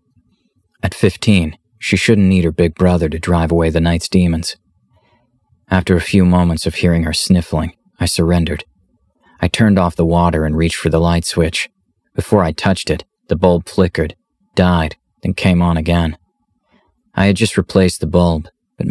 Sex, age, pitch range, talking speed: male, 30-49, 85-100 Hz, 170 wpm